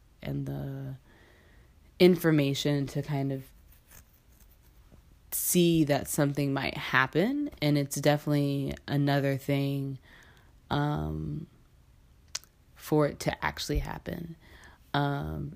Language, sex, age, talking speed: English, female, 20-39, 90 wpm